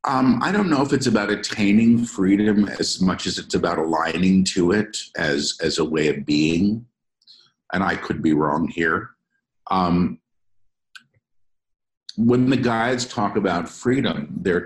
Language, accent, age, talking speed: English, American, 50-69, 150 wpm